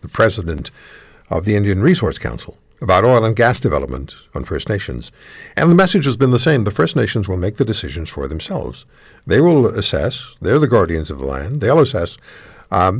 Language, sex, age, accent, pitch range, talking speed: English, male, 60-79, American, 100-150 Hz, 200 wpm